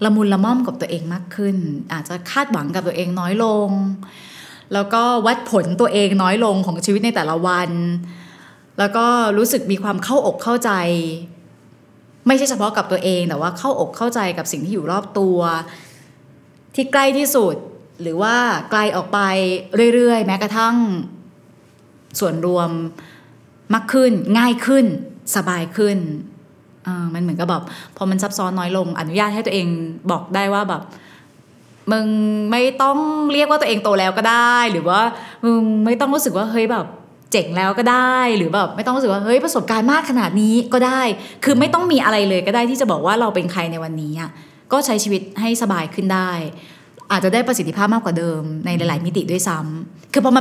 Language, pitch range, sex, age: Thai, 175-235 Hz, female, 20-39